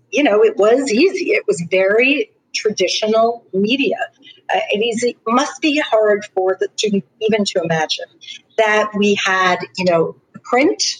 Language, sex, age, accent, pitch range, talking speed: English, female, 50-69, American, 190-265 Hz, 145 wpm